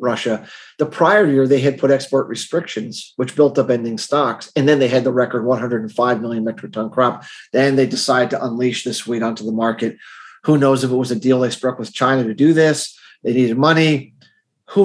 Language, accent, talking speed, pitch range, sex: English, American, 215 wpm, 125-145 Hz, male